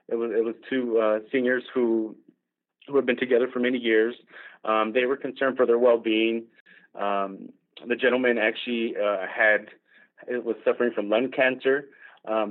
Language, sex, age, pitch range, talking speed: English, male, 30-49, 110-135 Hz, 170 wpm